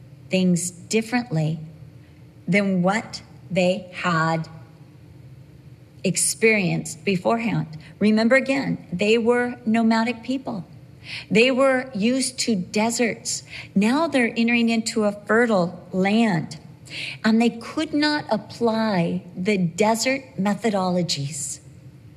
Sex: female